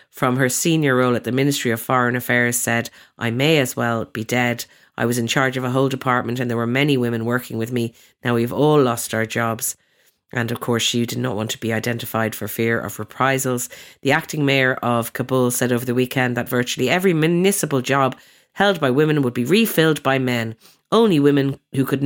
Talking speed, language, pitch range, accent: 215 wpm, English, 115-135 Hz, Irish